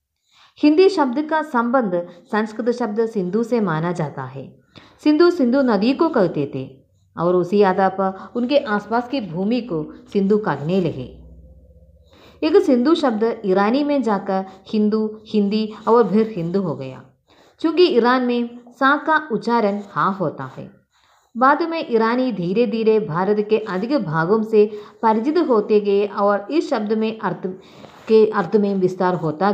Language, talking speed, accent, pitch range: Hindi, 145 wpm, native, 185-250 Hz